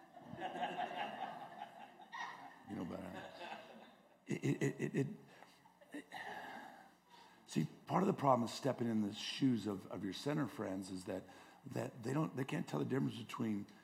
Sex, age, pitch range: male, 50-69, 100-145 Hz